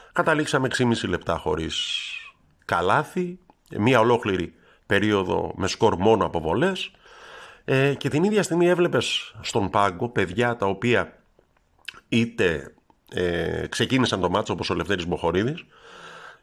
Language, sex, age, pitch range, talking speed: Greek, male, 50-69, 95-145 Hz, 110 wpm